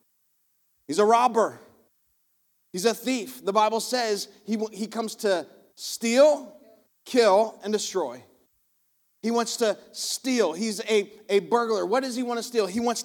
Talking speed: 150 wpm